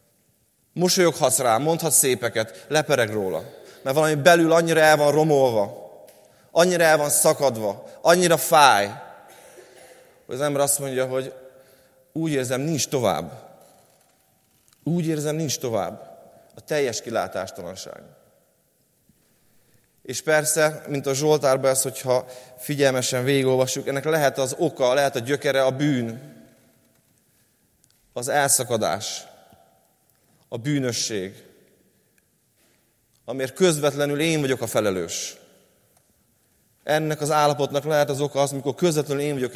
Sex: male